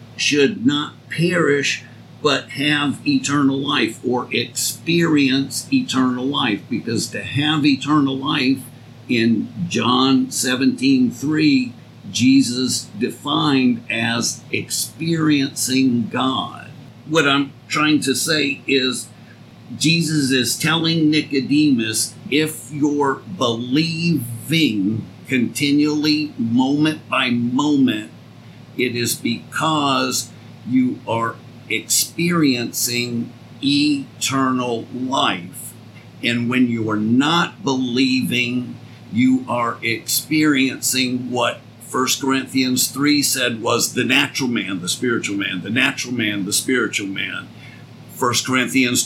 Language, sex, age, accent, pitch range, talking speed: English, male, 50-69, American, 120-145 Hz, 95 wpm